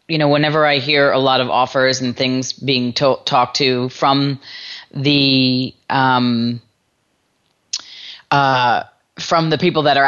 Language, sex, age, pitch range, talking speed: English, female, 30-49, 130-150 Hz, 135 wpm